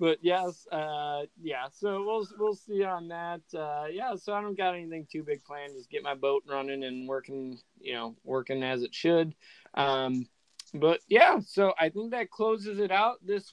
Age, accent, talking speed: 20-39, American, 195 wpm